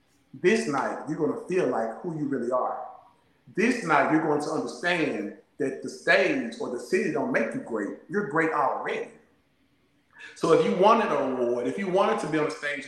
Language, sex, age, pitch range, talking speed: English, male, 30-49, 125-160 Hz, 200 wpm